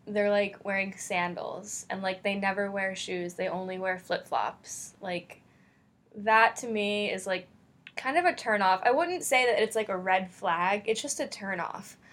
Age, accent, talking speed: 10-29, American, 185 wpm